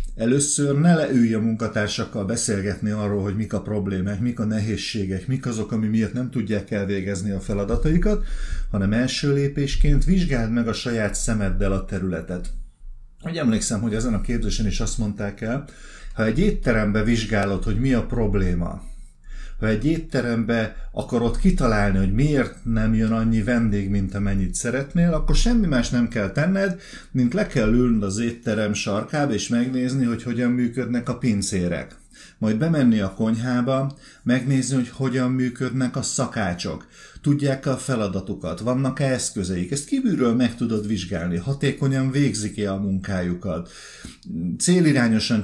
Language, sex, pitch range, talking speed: Hungarian, male, 100-130 Hz, 145 wpm